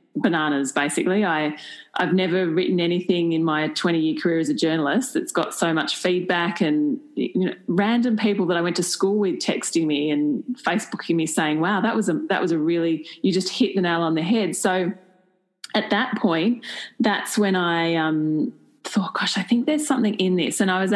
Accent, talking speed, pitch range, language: Australian, 205 wpm, 170-215 Hz, English